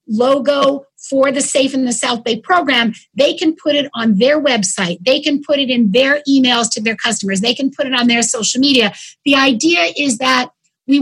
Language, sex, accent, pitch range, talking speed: English, female, American, 240-290 Hz, 210 wpm